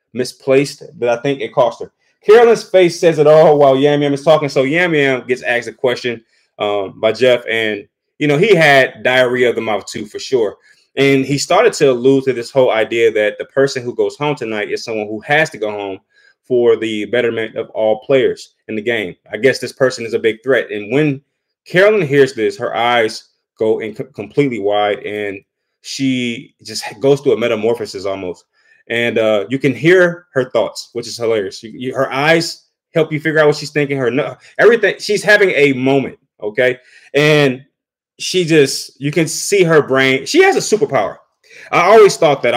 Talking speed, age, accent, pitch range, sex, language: 200 wpm, 20-39, American, 120-165 Hz, male, English